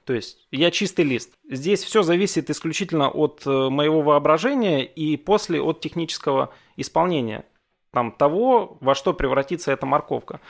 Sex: male